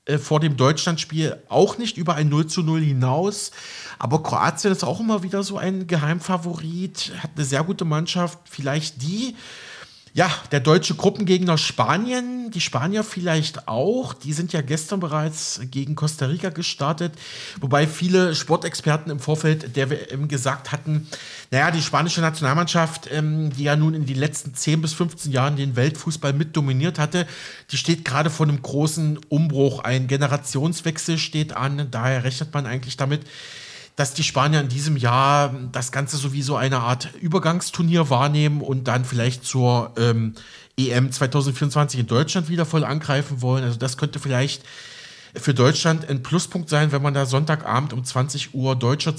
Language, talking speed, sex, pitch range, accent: German, 160 wpm, male, 135-165 Hz, German